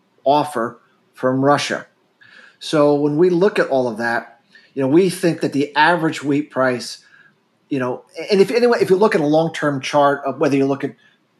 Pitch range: 135-155 Hz